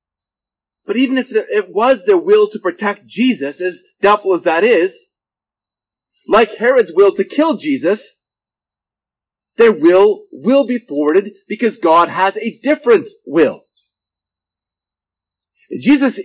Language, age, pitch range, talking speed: English, 30-49, 180-275 Hz, 120 wpm